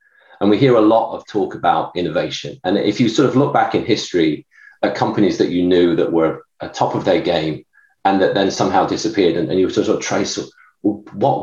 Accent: British